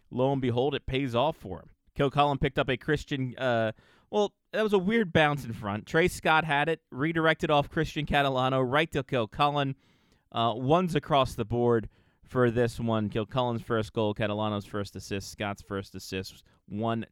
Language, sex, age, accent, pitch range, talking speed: English, male, 20-39, American, 110-155 Hz, 180 wpm